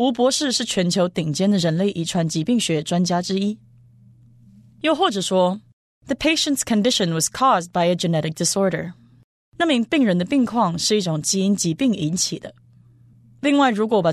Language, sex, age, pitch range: Chinese, female, 20-39, 160-225 Hz